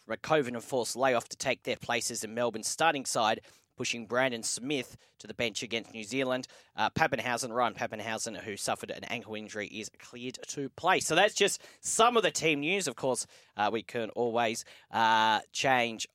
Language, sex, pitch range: English, male, 120-160 Hz